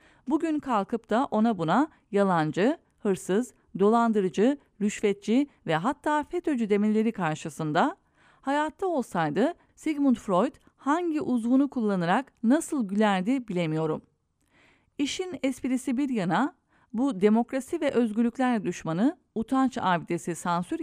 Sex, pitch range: female, 185-270 Hz